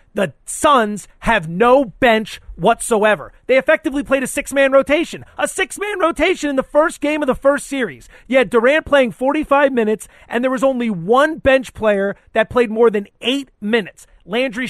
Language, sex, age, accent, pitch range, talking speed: English, male, 30-49, American, 200-260 Hz, 175 wpm